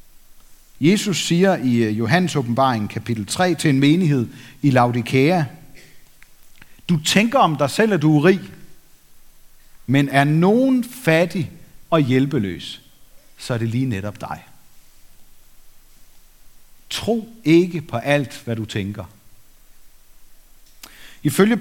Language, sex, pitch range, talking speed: Danish, male, 115-170 Hz, 110 wpm